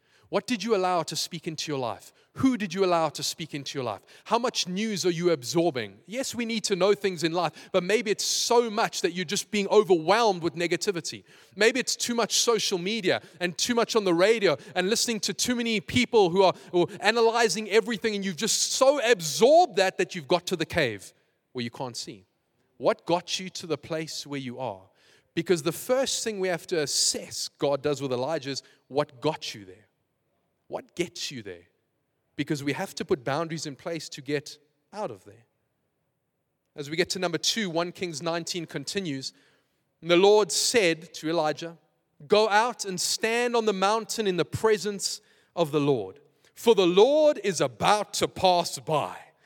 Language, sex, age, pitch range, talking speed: English, male, 20-39, 155-215 Hz, 195 wpm